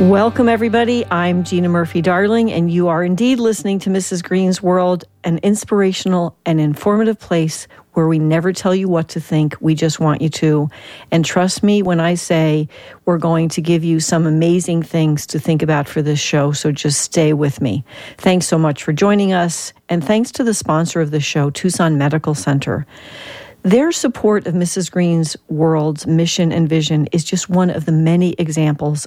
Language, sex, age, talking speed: English, female, 50-69, 185 wpm